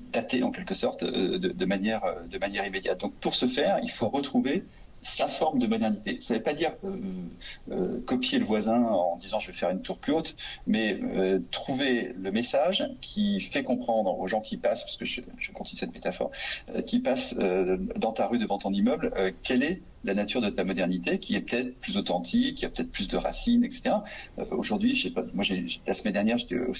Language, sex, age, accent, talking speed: French, male, 40-59, French, 225 wpm